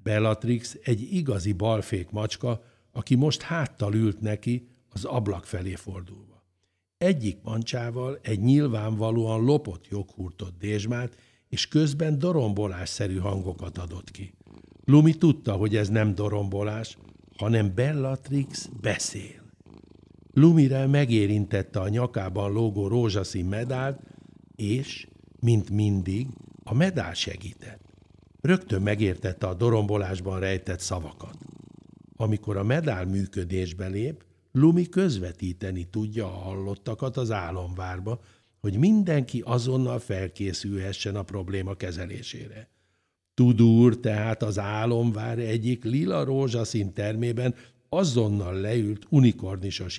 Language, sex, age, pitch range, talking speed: Hungarian, male, 60-79, 95-125 Hz, 100 wpm